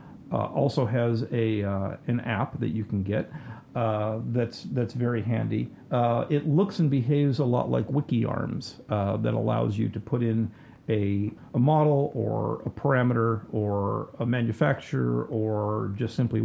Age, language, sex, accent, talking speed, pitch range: 50-69, English, male, American, 160 wpm, 115-135 Hz